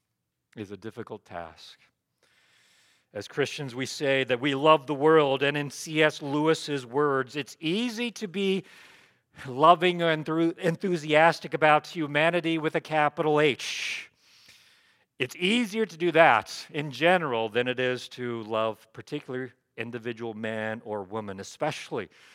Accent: American